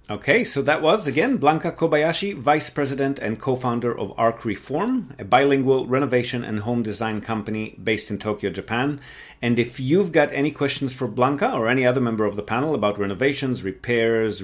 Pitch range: 110-140 Hz